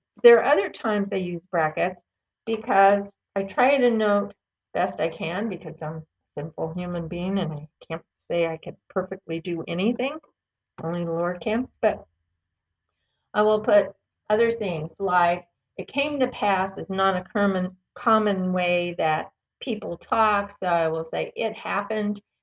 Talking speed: 160 wpm